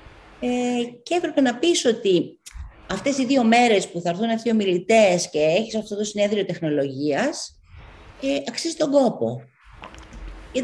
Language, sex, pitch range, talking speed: Greek, female, 155-255 Hz, 140 wpm